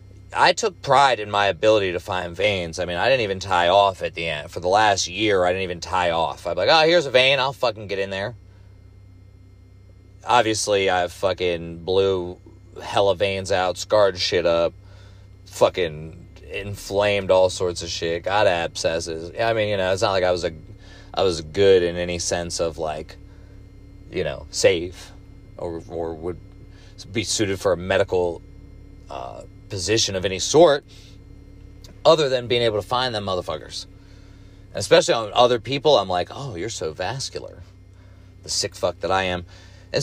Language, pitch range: English, 95-105 Hz